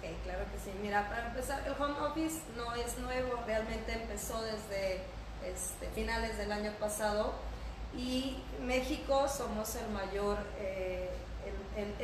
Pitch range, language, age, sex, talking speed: 205-245 Hz, Spanish, 20-39, female, 130 wpm